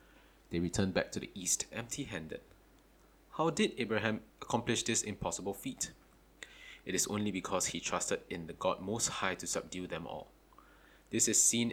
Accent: Malaysian